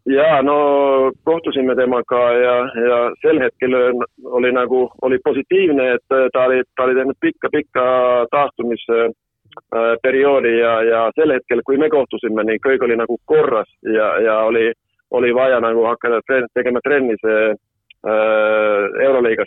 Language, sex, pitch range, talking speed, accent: English, male, 110-130 Hz, 140 wpm, Finnish